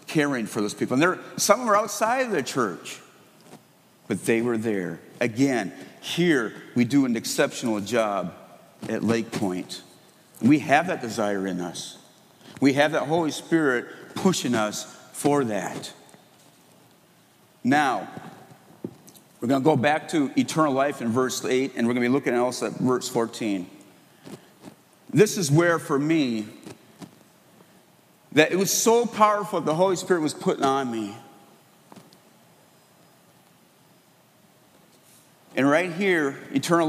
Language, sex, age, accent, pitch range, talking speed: English, male, 50-69, American, 120-170 Hz, 140 wpm